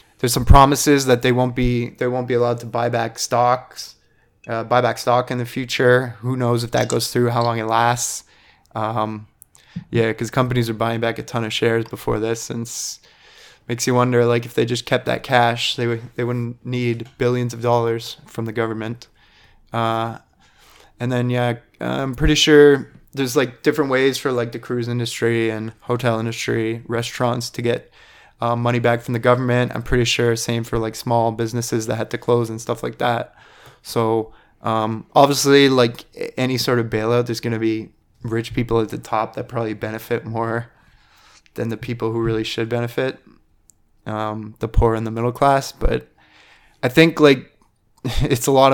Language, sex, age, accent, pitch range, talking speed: English, male, 20-39, American, 115-125 Hz, 190 wpm